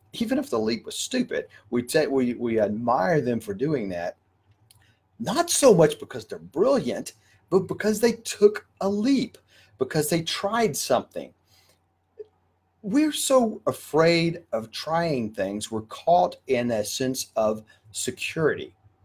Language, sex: English, male